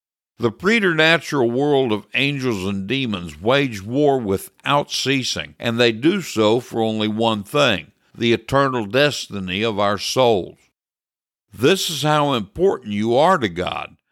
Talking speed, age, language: 140 wpm, 60-79, English